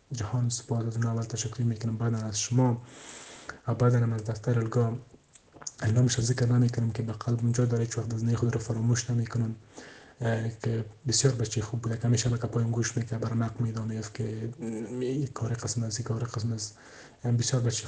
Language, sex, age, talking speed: English, male, 20-39, 180 wpm